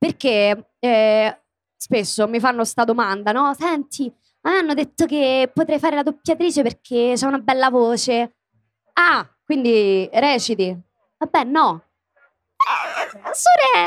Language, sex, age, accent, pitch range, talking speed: Italian, female, 20-39, native, 220-285 Hz, 120 wpm